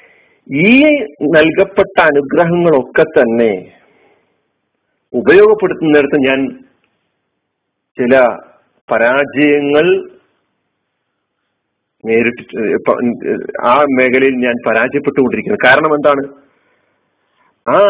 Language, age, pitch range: Malayalam, 50-69, 145-200 Hz